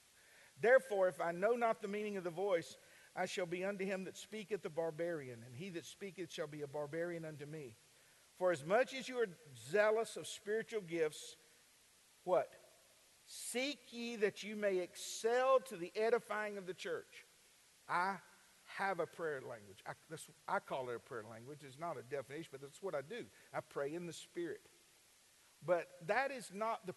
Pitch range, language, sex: 165-215 Hz, English, male